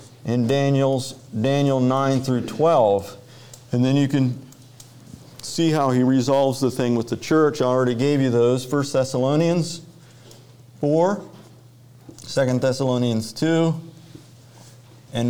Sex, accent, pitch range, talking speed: male, American, 120-140 Hz, 120 wpm